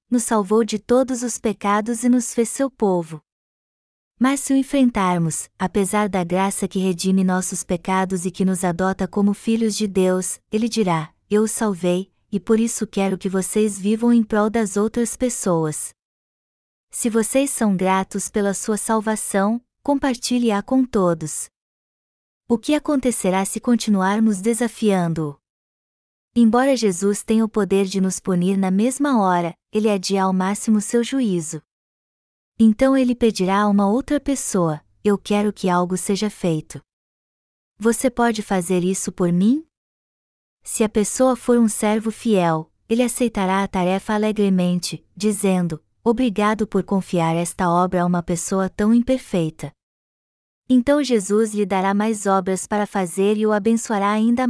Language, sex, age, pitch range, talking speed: Portuguese, female, 20-39, 185-230 Hz, 150 wpm